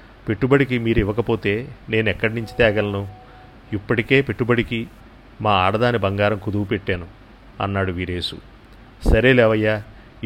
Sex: male